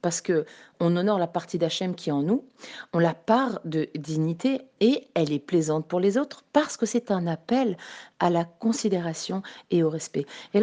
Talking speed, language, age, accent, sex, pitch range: 200 wpm, French, 40-59, French, female, 185-245 Hz